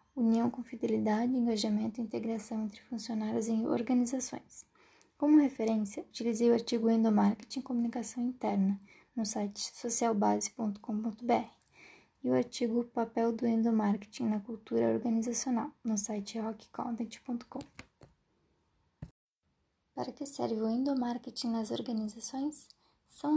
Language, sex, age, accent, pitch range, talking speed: Portuguese, female, 10-29, Brazilian, 225-255 Hz, 105 wpm